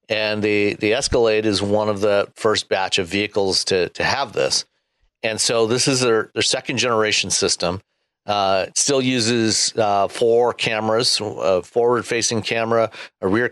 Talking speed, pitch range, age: 165 wpm, 105-120 Hz, 50-69